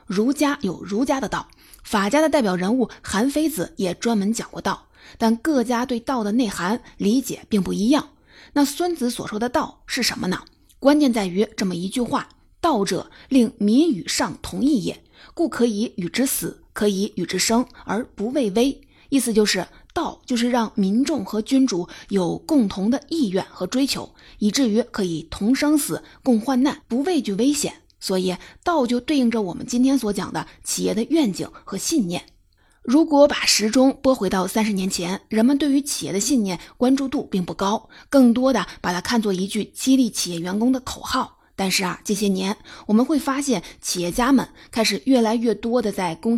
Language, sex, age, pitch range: Chinese, female, 30-49, 195-265 Hz